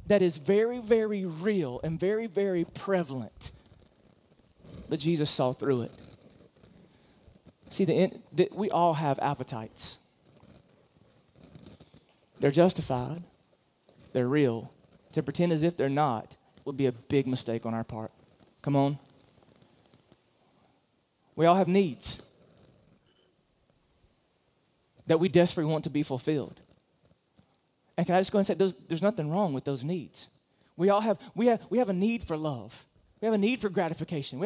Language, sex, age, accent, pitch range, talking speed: English, male, 30-49, American, 150-210 Hz, 145 wpm